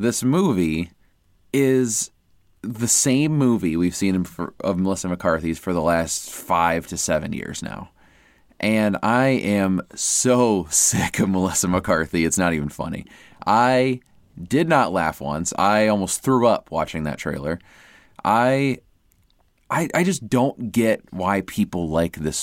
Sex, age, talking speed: male, 20-39, 145 wpm